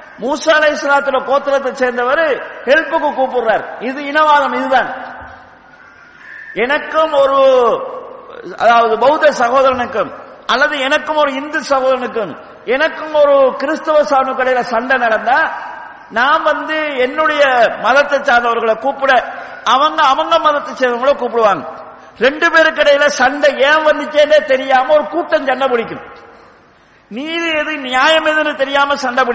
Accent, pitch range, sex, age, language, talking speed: Indian, 250-305 Hz, male, 50-69, English, 80 wpm